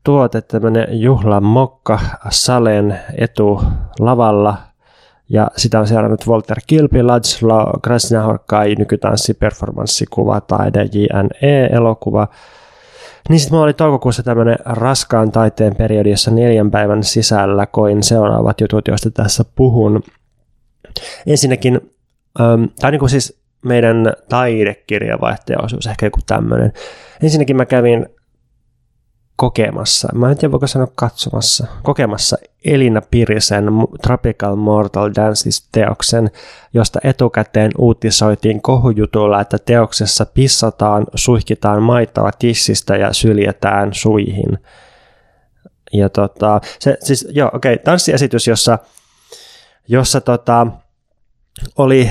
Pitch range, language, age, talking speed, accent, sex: 105-125 Hz, Finnish, 20-39, 100 wpm, native, male